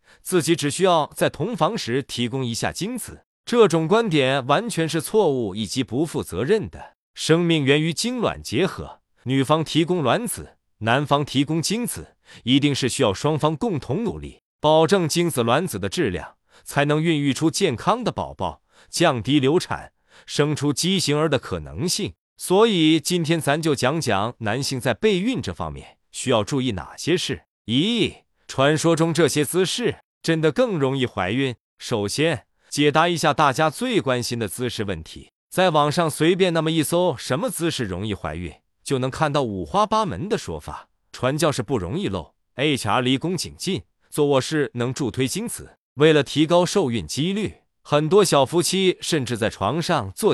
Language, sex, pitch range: Chinese, male, 125-170 Hz